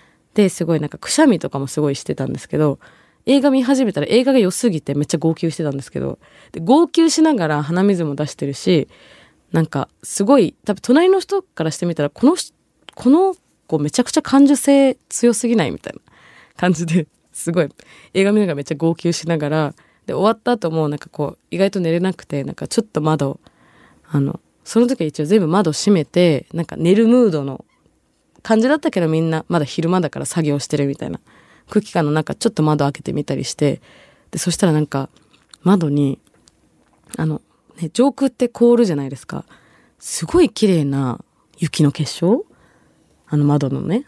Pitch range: 150-235 Hz